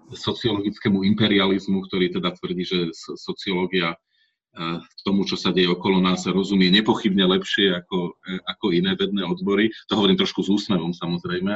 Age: 40-59